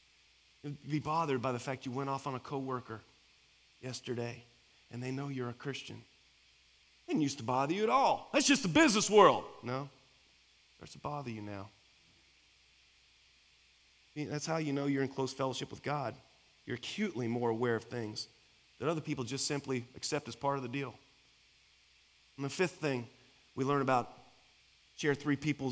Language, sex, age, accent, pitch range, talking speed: English, male, 30-49, American, 130-200 Hz, 180 wpm